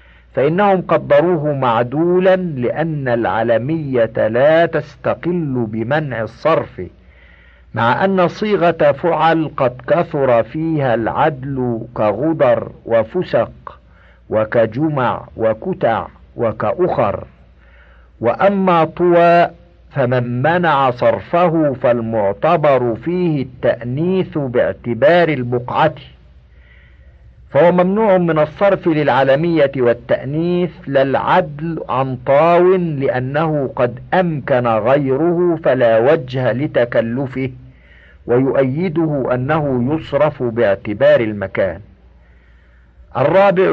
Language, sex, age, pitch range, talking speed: Arabic, male, 50-69, 115-165 Hz, 75 wpm